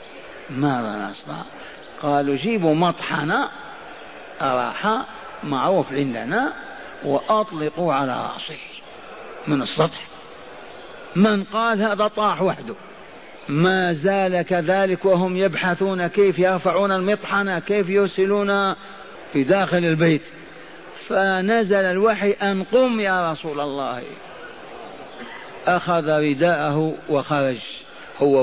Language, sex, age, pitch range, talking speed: Arabic, male, 50-69, 145-205 Hz, 90 wpm